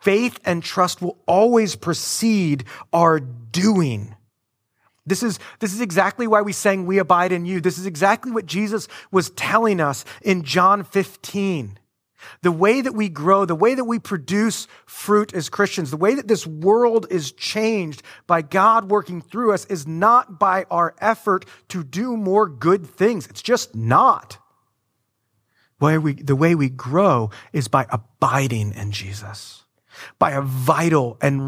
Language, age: English, 30-49